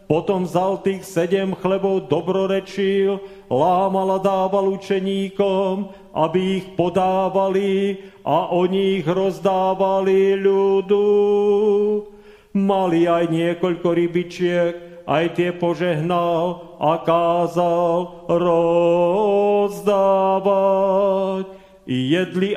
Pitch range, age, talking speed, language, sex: 175-195 Hz, 40-59, 75 wpm, Slovak, male